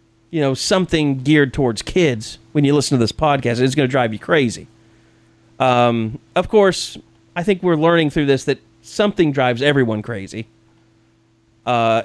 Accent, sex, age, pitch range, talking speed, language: American, male, 30-49, 110-150 Hz, 165 wpm, English